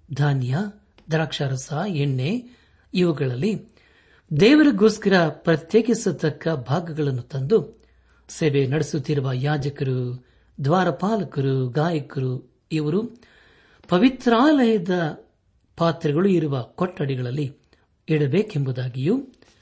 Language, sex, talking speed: Kannada, male, 60 wpm